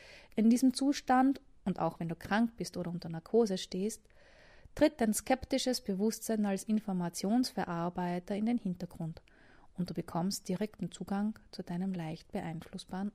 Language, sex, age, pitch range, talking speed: German, female, 30-49, 180-230 Hz, 140 wpm